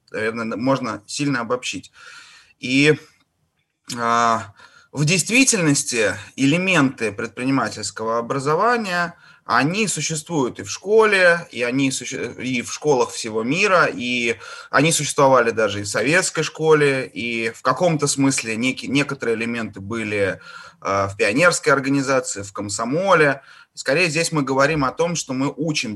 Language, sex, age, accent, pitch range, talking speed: Russian, male, 20-39, native, 115-160 Hz, 125 wpm